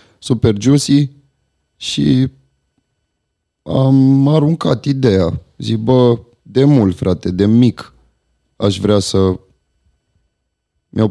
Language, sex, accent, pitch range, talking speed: Romanian, male, native, 95-115 Hz, 85 wpm